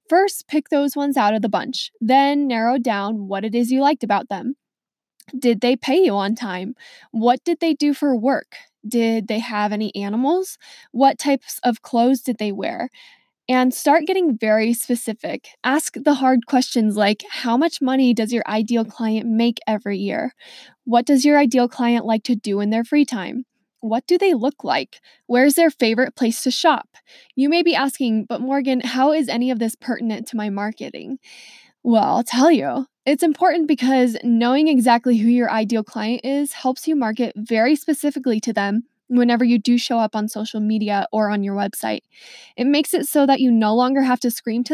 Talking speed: 195 wpm